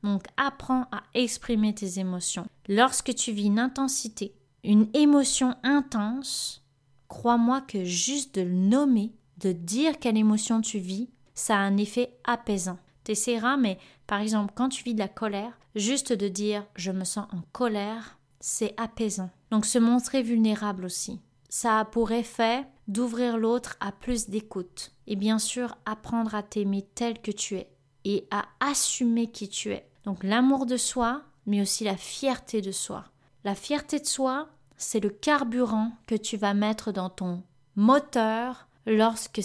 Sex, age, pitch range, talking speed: female, 20-39, 200-245 Hz, 160 wpm